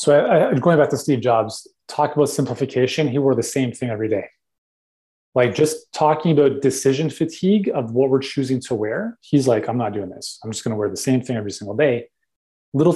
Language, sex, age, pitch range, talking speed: English, male, 30-49, 120-155 Hz, 220 wpm